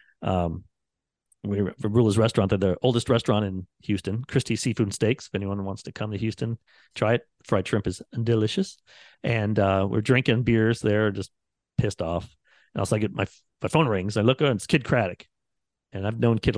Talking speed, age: 205 wpm, 40-59